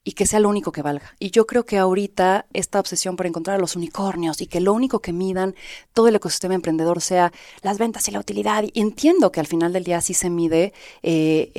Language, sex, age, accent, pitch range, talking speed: Spanish, female, 30-49, Mexican, 170-210 Hz, 235 wpm